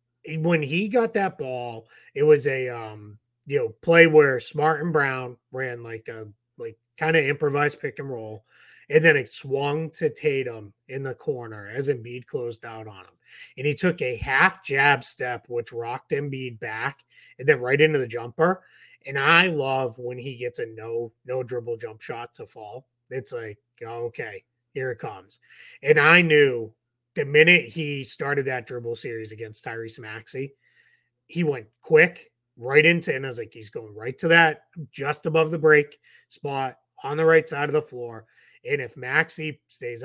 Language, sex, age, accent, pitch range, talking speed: English, male, 30-49, American, 120-160 Hz, 180 wpm